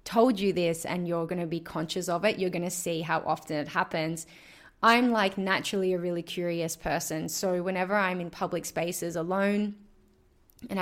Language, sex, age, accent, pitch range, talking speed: English, female, 20-39, Australian, 165-195 Hz, 175 wpm